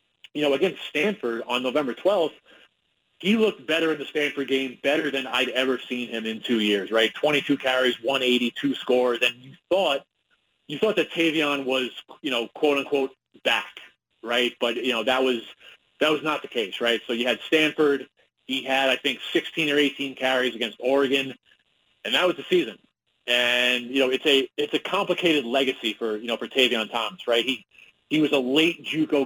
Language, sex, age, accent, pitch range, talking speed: English, male, 30-49, American, 125-150 Hz, 195 wpm